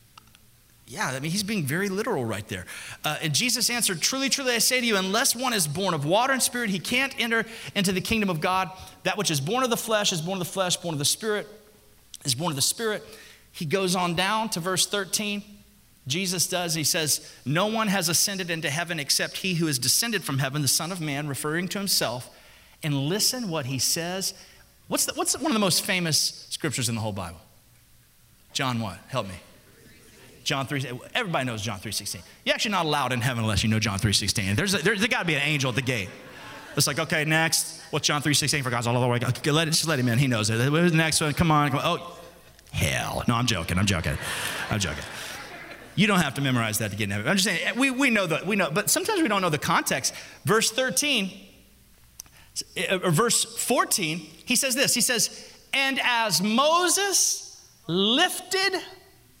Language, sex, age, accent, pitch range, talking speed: English, male, 30-49, American, 135-210 Hz, 220 wpm